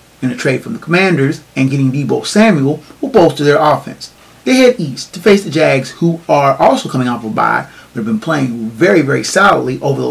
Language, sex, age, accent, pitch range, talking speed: English, male, 30-49, American, 135-175 Hz, 225 wpm